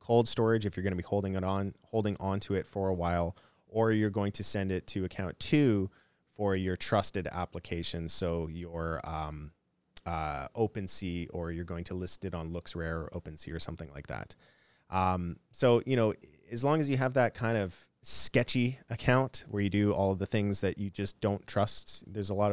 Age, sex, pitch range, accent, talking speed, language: 20-39, male, 85-110 Hz, American, 210 wpm, English